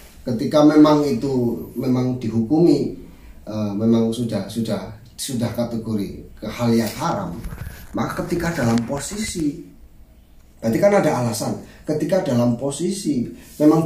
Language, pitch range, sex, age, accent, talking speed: Indonesian, 110-170 Hz, male, 30-49, native, 105 wpm